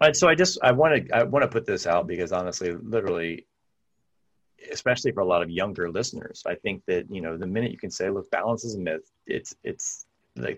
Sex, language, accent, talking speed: male, English, American, 235 wpm